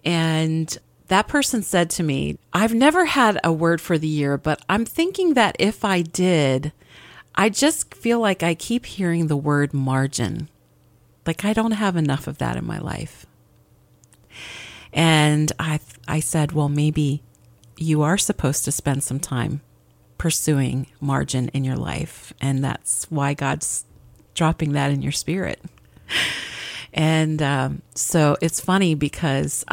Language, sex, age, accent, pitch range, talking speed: English, female, 40-59, American, 140-190 Hz, 150 wpm